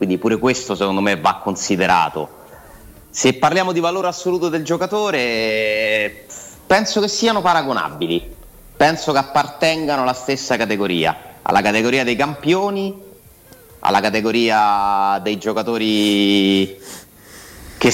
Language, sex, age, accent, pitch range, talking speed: Italian, male, 30-49, native, 95-130 Hz, 110 wpm